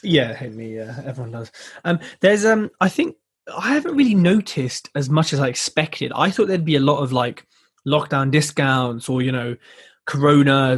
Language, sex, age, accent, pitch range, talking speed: English, male, 20-39, British, 130-180 Hz, 190 wpm